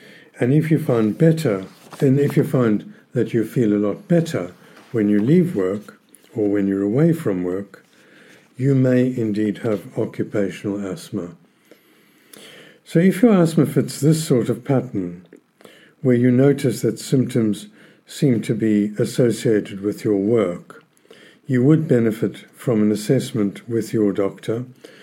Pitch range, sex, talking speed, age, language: 105-145 Hz, male, 145 wpm, 60-79, English